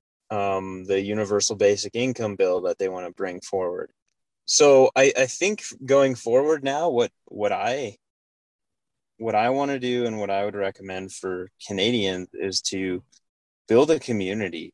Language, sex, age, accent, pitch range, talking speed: English, male, 20-39, American, 100-130 Hz, 160 wpm